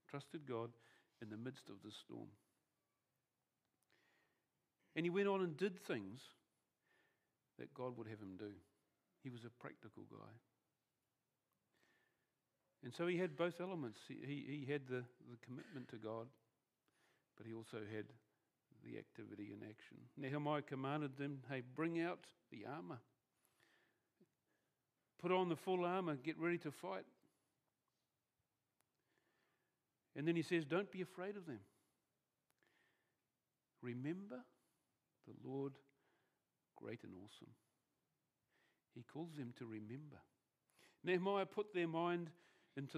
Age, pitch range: 50-69, 120-165 Hz